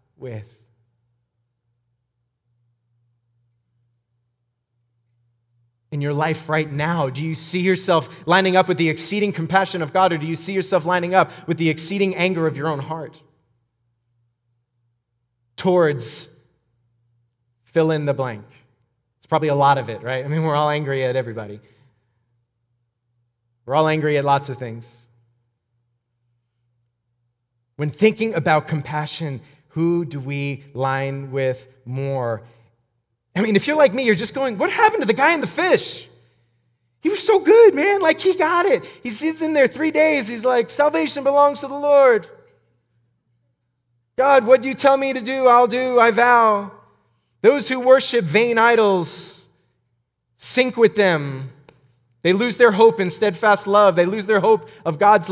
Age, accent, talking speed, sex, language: 30-49, American, 155 wpm, male, English